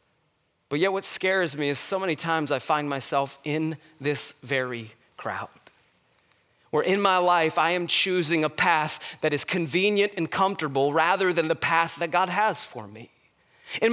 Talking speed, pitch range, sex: 170 wpm, 190-285 Hz, male